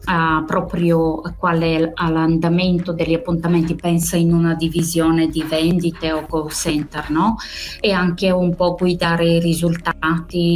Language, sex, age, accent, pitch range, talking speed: Italian, female, 20-39, native, 160-175 Hz, 140 wpm